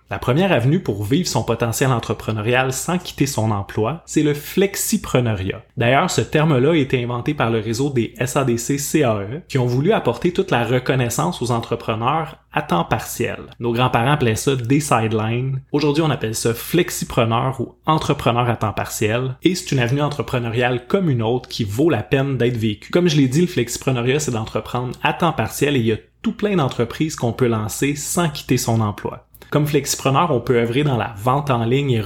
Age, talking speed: 20-39, 195 wpm